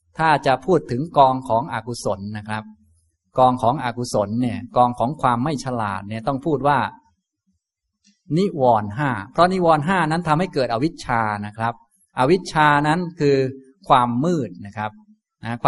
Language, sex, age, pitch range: Thai, male, 20-39, 115-160 Hz